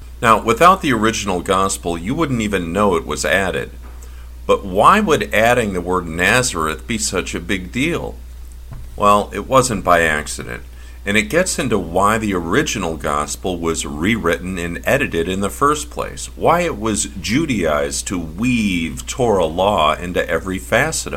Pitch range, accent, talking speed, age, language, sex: 70-105 Hz, American, 160 wpm, 50-69, English, male